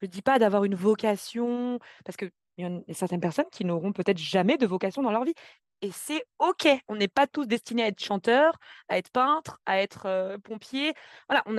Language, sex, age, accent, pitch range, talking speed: French, female, 20-39, French, 185-230 Hz, 215 wpm